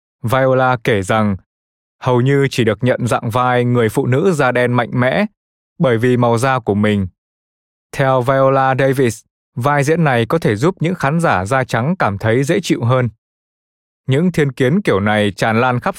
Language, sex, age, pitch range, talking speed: Vietnamese, male, 20-39, 115-140 Hz, 190 wpm